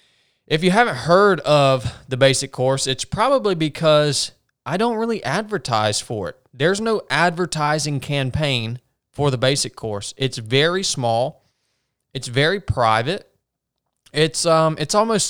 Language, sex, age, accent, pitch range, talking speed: English, male, 20-39, American, 130-170 Hz, 135 wpm